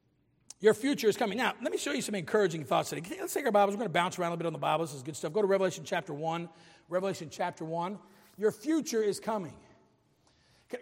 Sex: male